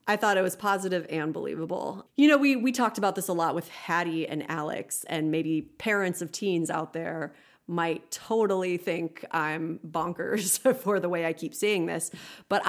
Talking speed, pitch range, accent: 190 wpm, 160-200 Hz, American